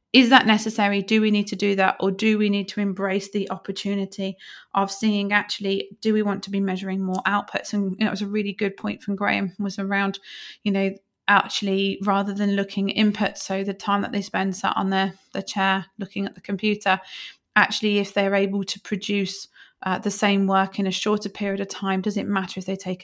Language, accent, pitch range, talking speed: English, British, 190-210 Hz, 220 wpm